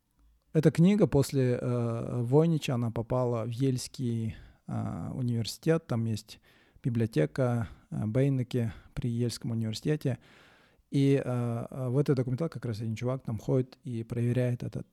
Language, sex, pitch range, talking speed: Russian, male, 115-135 Hz, 135 wpm